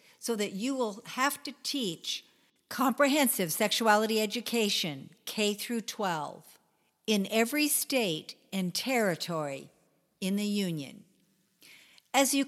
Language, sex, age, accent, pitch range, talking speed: English, female, 50-69, American, 180-250 Hz, 110 wpm